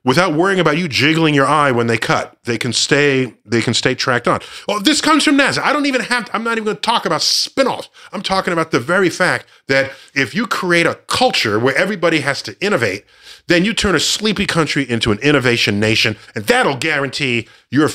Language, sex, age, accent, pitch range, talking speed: English, male, 40-59, American, 115-175 Hz, 225 wpm